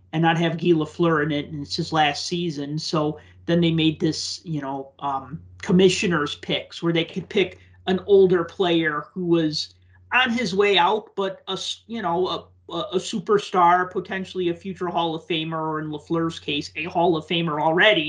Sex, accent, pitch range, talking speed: male, American, 155-200 Hz, 190 wpm